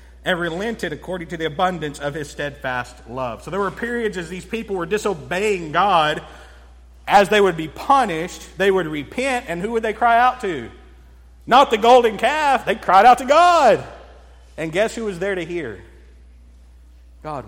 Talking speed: 180 wpm